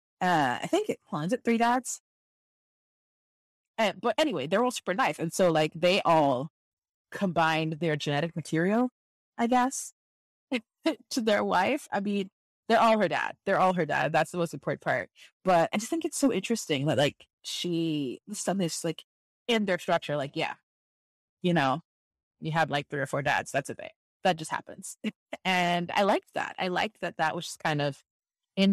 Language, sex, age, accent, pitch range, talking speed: English, female, 20-39, American, 155-210 Hz, 185 wpm